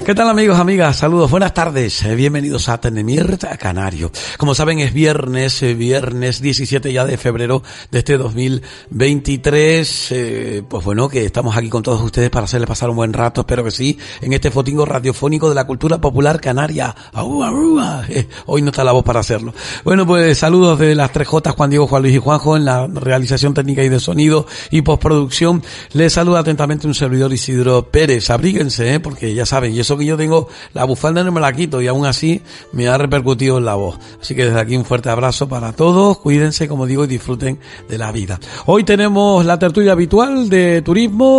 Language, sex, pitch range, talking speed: Spanish, male, 130-175 Hz, 200 wpm